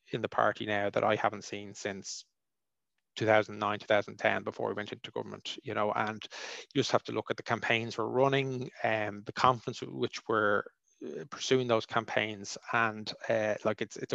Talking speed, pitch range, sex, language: 180 wpm, 110-130 Hz, male, English